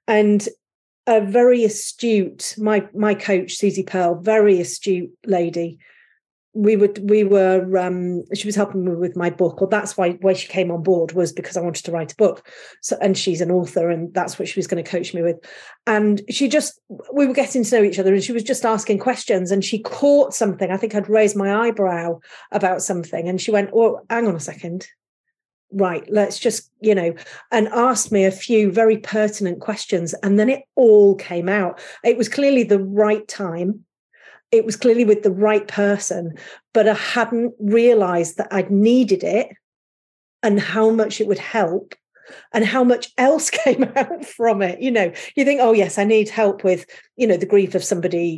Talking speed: 200 wpm